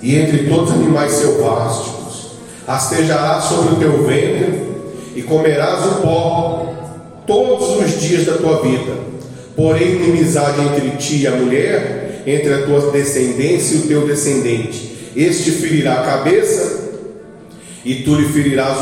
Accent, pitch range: Brazilian, 145-190 Hz